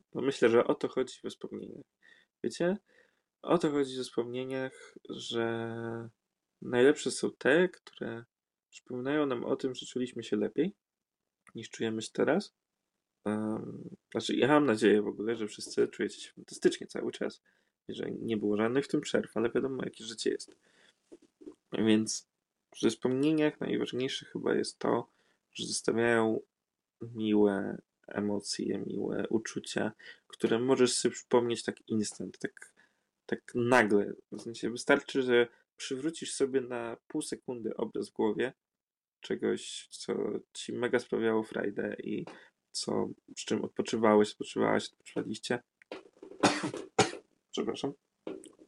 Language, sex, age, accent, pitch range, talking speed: Polish, male, 20-39, native, 110-140 Hz, 130 wpm